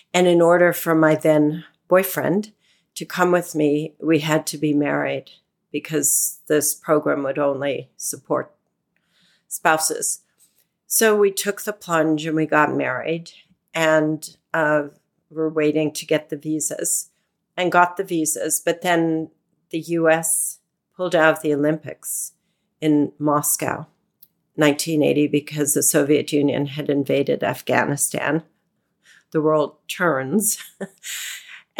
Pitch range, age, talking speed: 155-175 Hz, 50-69, 125 wpm